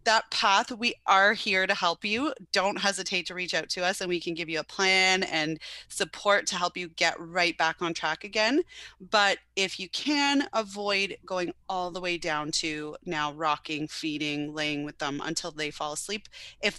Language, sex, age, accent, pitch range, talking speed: English, female, 30-49, American, 160-200 Hz, 195 wpm